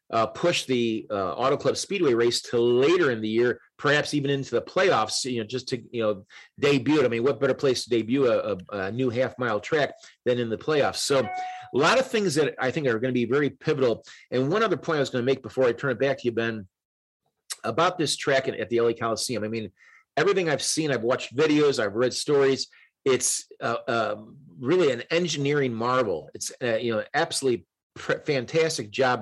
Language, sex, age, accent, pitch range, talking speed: English, male, 40-59, American, 115-155 Hz, 220 wpm